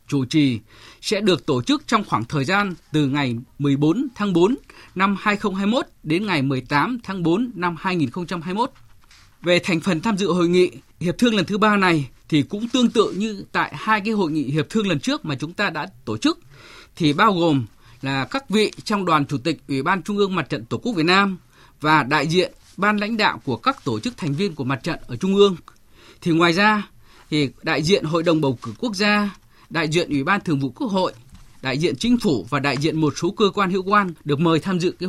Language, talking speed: Vietnamese, 225 wpm